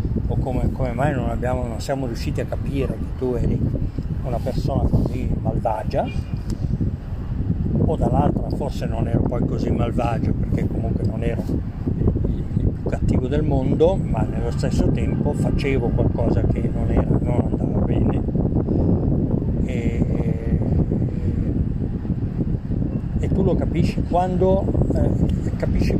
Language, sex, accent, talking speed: Italian, male, native, 125 wpm